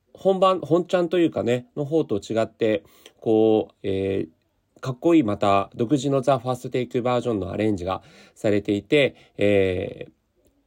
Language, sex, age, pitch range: Japanese, male, 40-59, 100-165 Hz